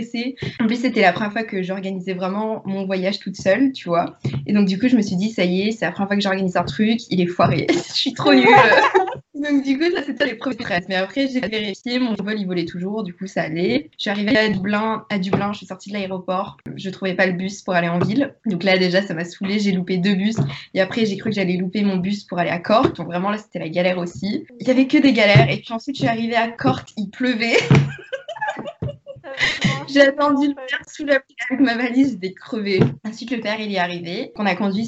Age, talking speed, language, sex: 20-39, 255 wpm, French, female